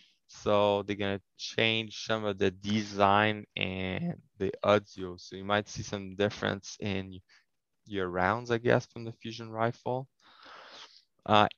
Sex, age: male, 20-39